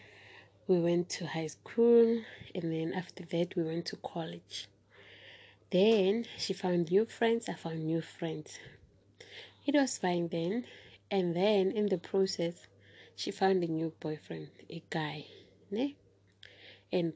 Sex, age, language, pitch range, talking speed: female, 20-39, English, 160-195 Hz, 135 wpm